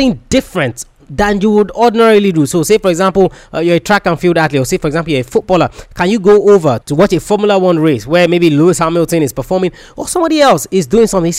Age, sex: 20-39, male